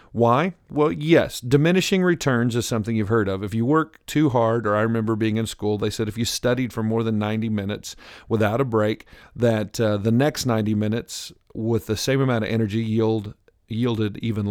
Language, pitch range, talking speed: English, 110-135 Hz, 205 wpm